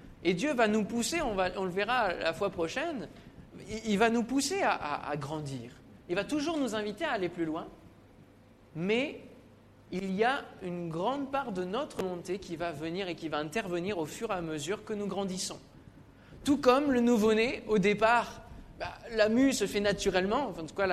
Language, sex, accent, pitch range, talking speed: French, male, French, 175-235 Hz, 205 wpm